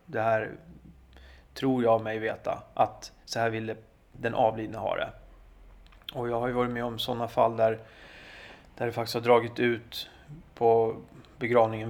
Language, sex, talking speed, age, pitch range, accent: Swedish, male, 165 wpm, 30-49, 110-120 Hz, native